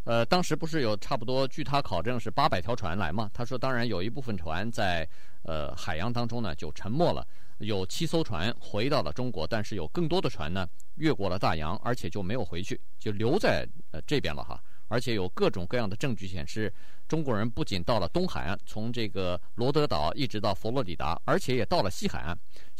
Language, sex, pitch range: Chinese, male, 100-140 Hz